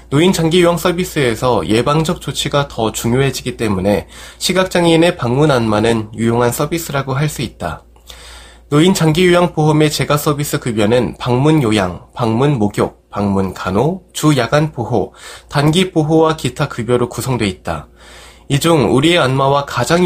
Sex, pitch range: male, 115-160 Hz